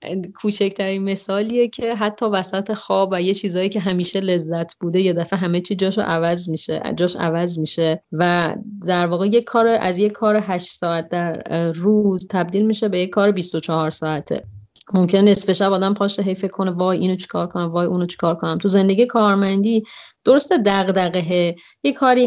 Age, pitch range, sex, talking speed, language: 30-49, 170-210 Hz, female, 180 wpm, Persian